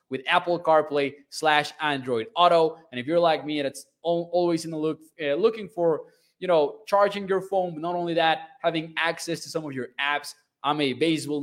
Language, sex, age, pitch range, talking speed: English, male, 20-39, 135-175 Hz, 205 wpm